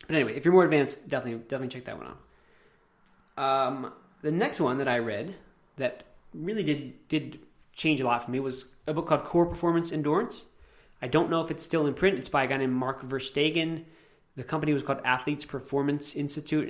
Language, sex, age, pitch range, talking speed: English, male, 20-39, 125-155 Hz, 205 wpm